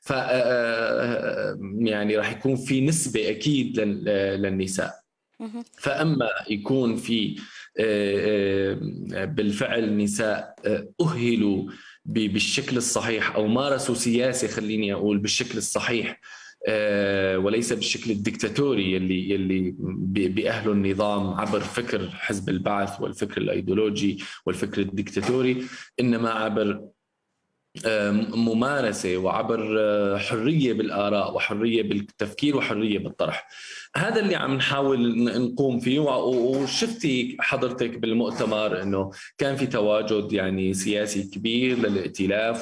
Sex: male